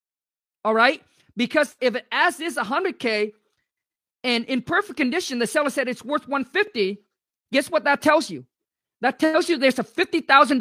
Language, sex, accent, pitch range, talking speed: English, male, American, 220-280 Hz, 185 wpm